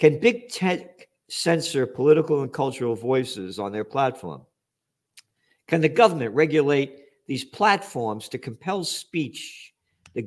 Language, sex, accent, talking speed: English, male, American, 125 wpm